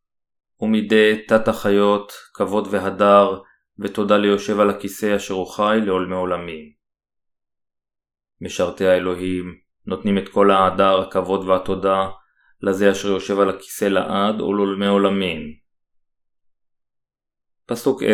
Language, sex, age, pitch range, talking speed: Hebrew, male, 20-39, 95-105 Hz, 105 wpm